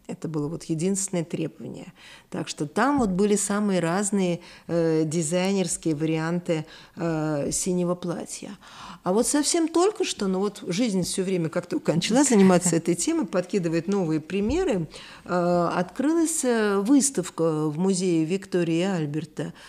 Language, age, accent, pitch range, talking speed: Russian, 50-69, native, 160-195 Hz, 135 wpm